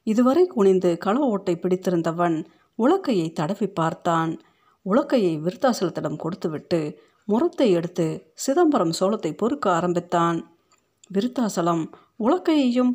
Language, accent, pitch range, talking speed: Tamil, native, 170-235 Hz, 85 wpm